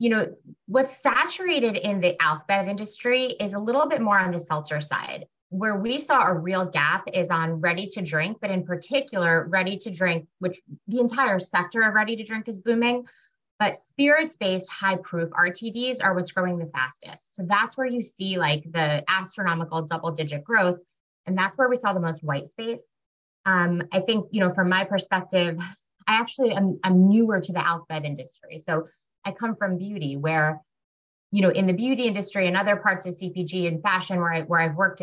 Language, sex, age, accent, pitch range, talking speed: English, female, 20-39, American, 165-205 Hz, 190 wpm